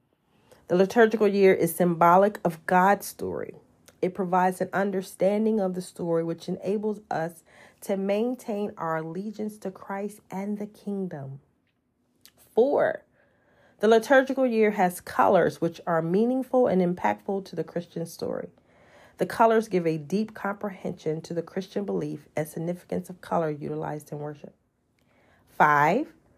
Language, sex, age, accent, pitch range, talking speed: English, female, 40-59, American, 170-225 Hz, 135 wpm